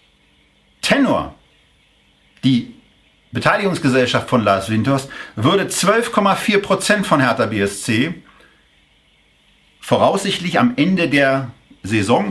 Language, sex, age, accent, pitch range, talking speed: German, male, 50-69, German, 130-180 Hz, 80 wpm